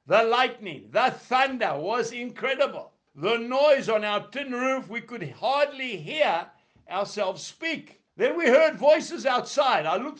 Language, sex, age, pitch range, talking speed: English, male, 60-79, 230-300 Hz, 145 wpm